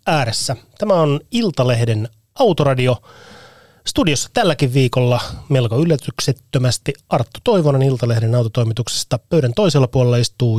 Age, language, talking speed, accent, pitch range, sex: 30-49, Finnish, 100 wpm, native, 120-145 Hz, male